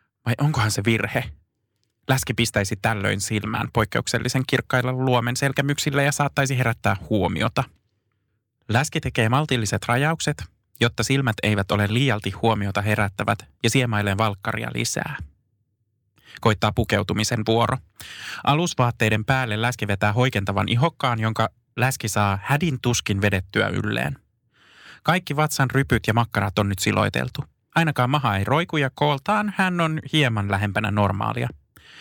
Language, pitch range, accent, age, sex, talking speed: Finnish, 105-135 Hz, native, 20-39, male, 125 wpm